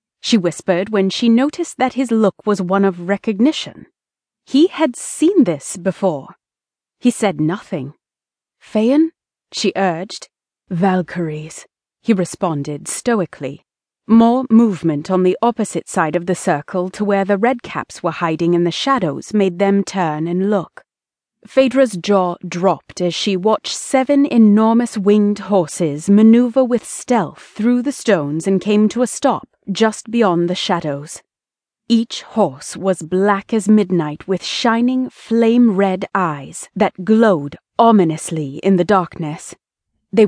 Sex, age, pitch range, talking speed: female, 30-49, 180-230 Hz, 135 wpm